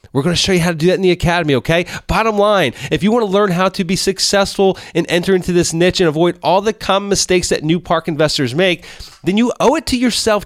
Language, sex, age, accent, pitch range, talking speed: English, male, 30-49, American, 130-185 Hz, 265 wpm